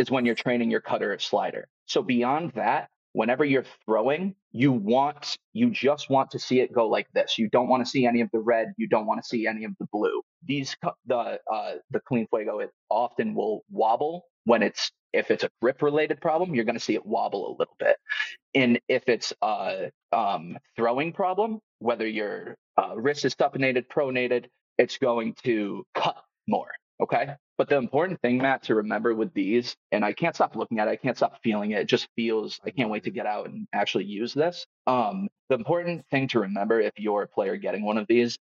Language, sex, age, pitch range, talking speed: English, male, 30-49, 115-170 Hz, 215 wpm